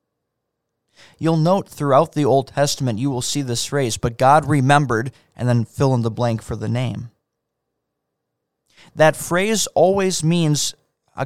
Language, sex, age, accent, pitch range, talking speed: English, male, 20-39, American, 120-150 Hz, 150 wpm